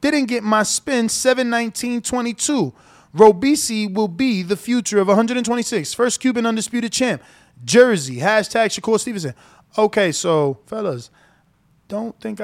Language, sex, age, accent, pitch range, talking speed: English, male, 20-39, American, 175-245 Hz, 120 wpm